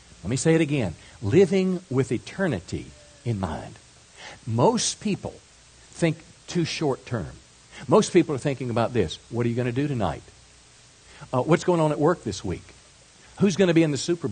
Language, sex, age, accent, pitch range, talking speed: English, male, 50-69, American, 110-160 Hz, 185 wpm